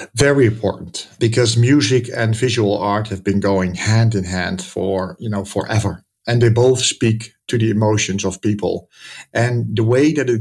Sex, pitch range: male, 105-120 Hz